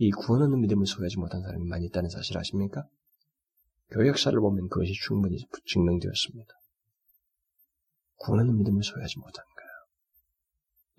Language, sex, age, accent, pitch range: Korean, male, 30-49, native, 85-125 Hz